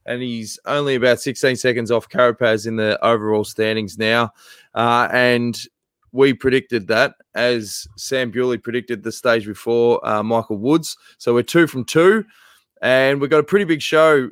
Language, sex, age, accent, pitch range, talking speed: English, male, 20-39, Australian, 105-125 Hz, 170 wpm